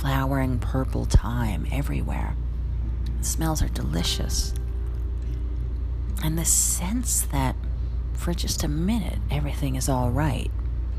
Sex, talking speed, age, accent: female, 110 wpm, 40-59, American